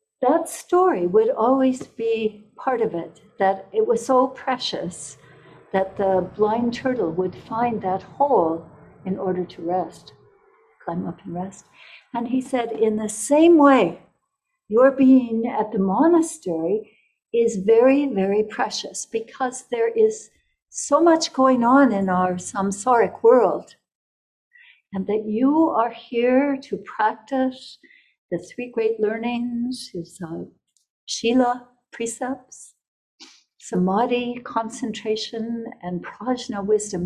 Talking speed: 125 wpm